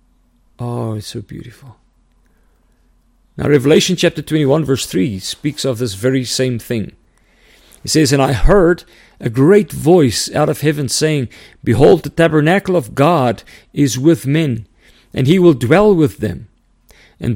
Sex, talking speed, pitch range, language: male, 150 wpm, 120-160 Hz, English